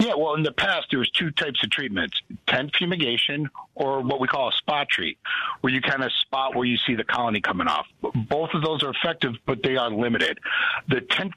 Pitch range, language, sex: 120-150 Hz, English, male